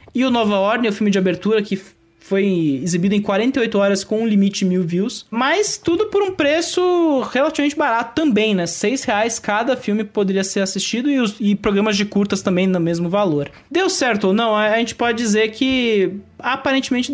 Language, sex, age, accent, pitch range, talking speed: English, male, 20-39, Brazilian, 195-250 Hz, 185 wpm